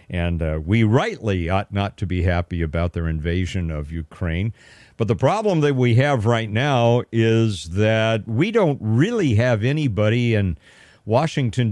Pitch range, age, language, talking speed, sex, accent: 90-130 Hz, 50-69, English, 160 wpm, male, American